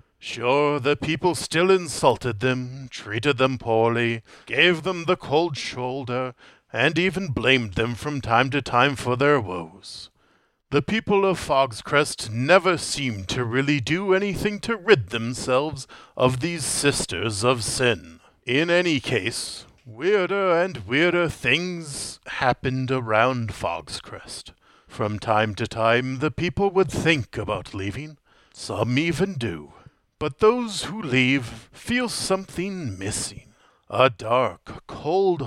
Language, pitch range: English, 115-170 Hz